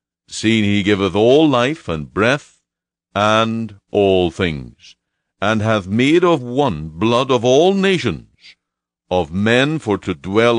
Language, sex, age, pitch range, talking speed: English, male, 60-79, 95-125 Hz, 135 wpm